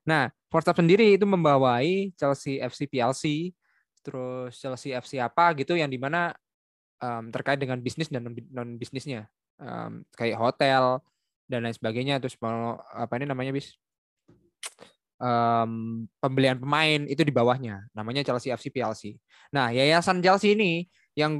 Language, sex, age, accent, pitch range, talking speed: Indonesian, male, 10-29, native, 120-145 Hz, 135 wpm